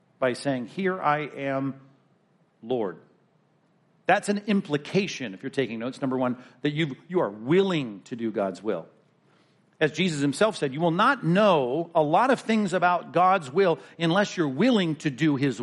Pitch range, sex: 130-175 Hz, male